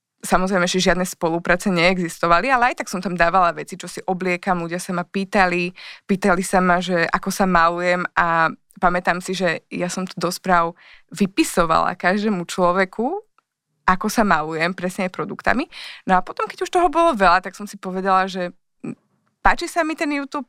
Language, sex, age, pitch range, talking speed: Slovak, female, 20-39, 180-220 Hz, 180 wpm